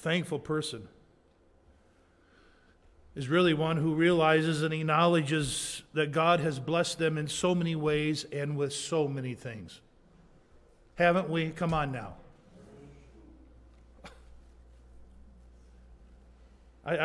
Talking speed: 100 wpm